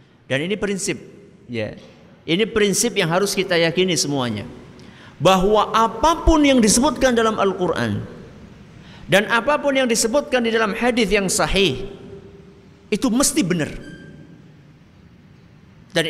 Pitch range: 175-235 Hz